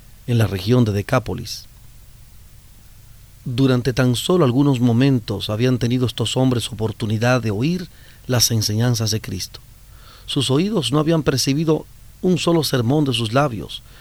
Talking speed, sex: 135 wpm, male